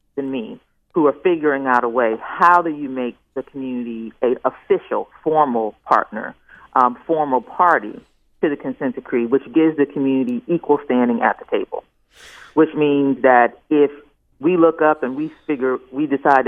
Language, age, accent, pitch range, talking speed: English, 40-59, American, 120-155 Hz, 170 wpm